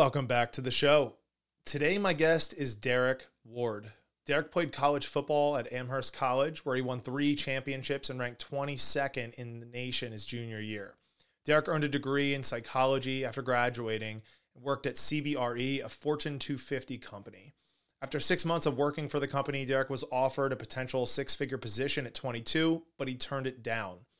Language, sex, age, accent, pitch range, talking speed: English, male, 30-49, American, 120-140 Hz, 175 wpm